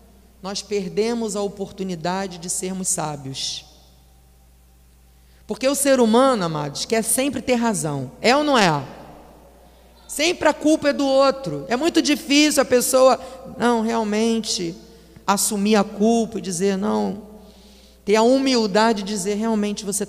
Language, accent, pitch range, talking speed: Portuguese, Brazilian, 165-220 Hz, 135 wpm